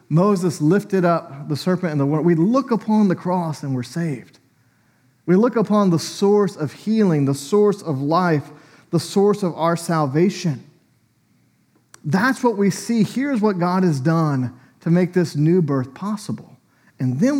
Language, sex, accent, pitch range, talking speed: English, male, American, 135-185 Hz, 170 wpm